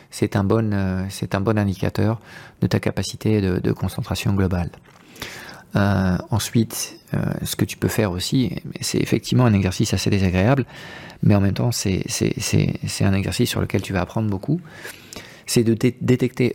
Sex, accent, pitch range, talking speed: male, French, 100-125 Hz, 180 wpm